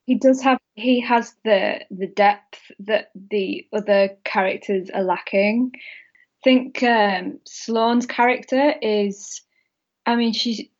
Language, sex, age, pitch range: English, female, 10-29, 200-245 Hz